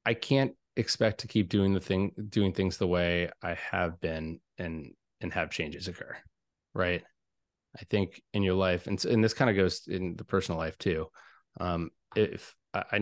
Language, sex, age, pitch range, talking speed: English, male, 20-39, 90-100 Hz, 185 wpm